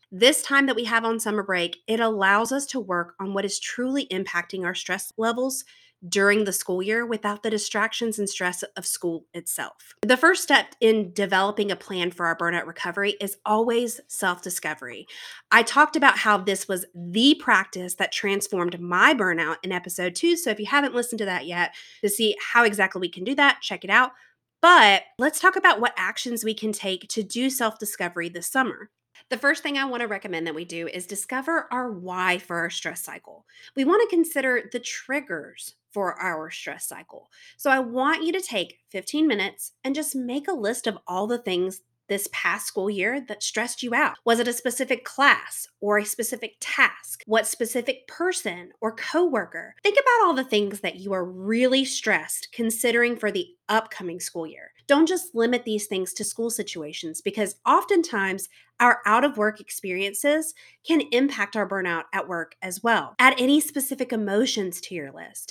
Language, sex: English, female